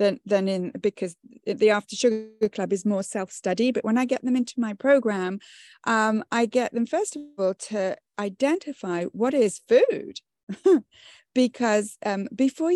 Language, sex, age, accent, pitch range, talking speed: English, female, 30-49, British, 190-250 Hz, 155 wpm